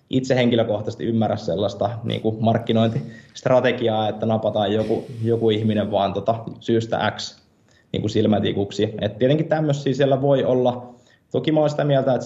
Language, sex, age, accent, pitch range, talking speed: Finnish, male, 20-39, native, 105-120 Hz, 140 wpm